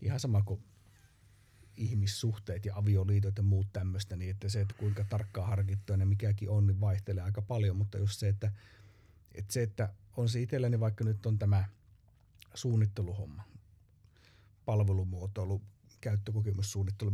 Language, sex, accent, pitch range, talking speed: Finnish, male, native, 100-115 Hz, 145 wpm